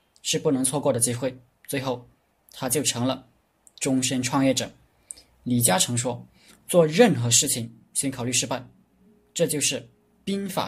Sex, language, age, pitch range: male, Chinese, 20-39, 120-155 Hz